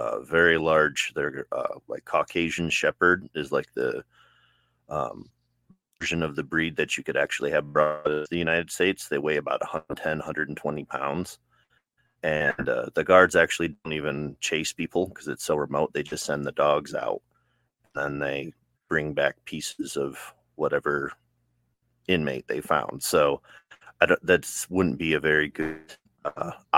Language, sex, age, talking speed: English, male, 30-49, 155 wpm